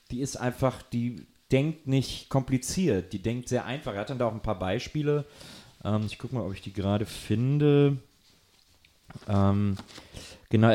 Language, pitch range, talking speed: German, 100-125 Hz, 170 wpm